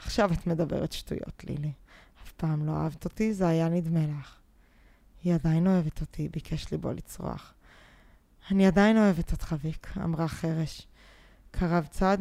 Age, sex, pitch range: 20-39, female, 160-190 Hz